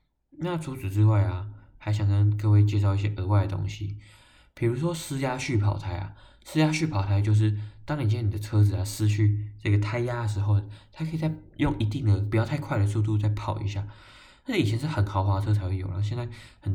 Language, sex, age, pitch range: Chinese, male, 20-39, 100-110 Hz